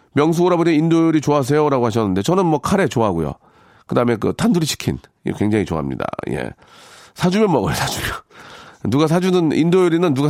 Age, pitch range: 40-59, 115-170 Hz